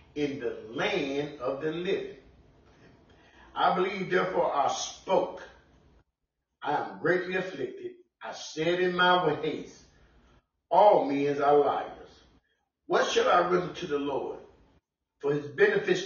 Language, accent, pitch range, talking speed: English, American, 135-205 Hz, 125 wpm